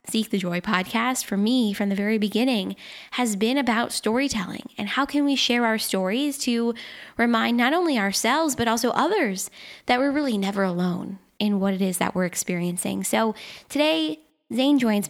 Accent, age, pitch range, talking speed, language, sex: American, 10-29, 200-250 Hz, 180 wpm, English, female